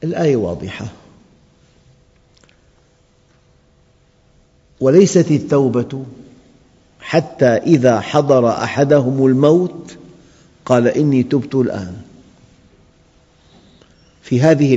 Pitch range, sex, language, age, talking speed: 115-145 Hz, male, Arabic, 50-69, 60 wpm